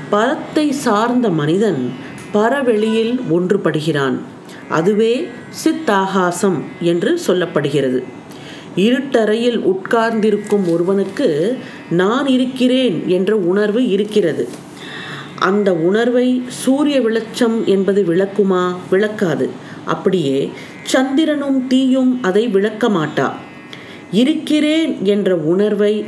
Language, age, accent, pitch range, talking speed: Tamil, 40-59, native, 175-250 Hz, 75 wpm